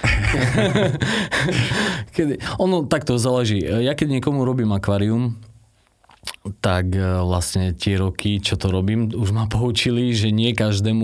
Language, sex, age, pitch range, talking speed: Slovak, male, 30-49, 95-110 Hz, 120 wpm